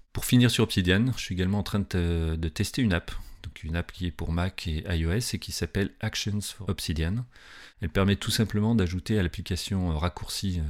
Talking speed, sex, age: 200 wpm, male, 40-59